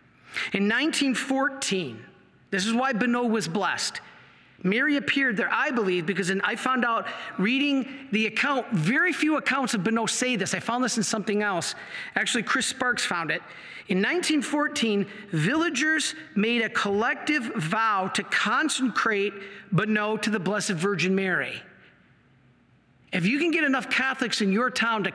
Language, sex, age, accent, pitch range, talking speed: English, male, 50-69, American, 195-260 Hz, 150 wpm